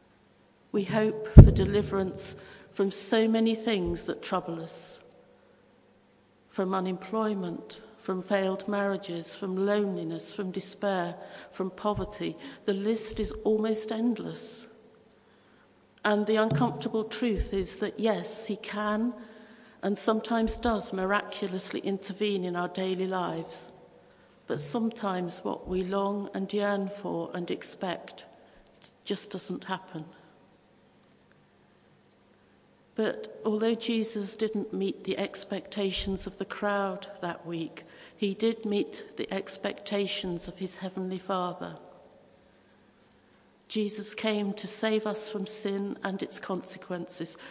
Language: English